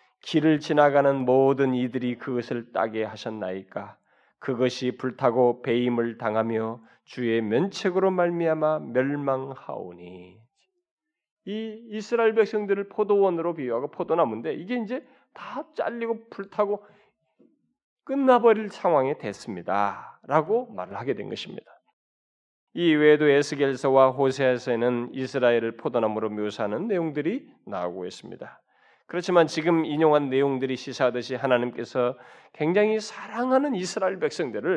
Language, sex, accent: Korean, male, native